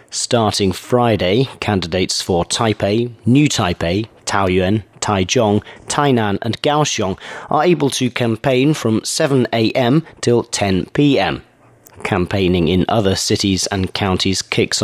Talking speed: 110 wpm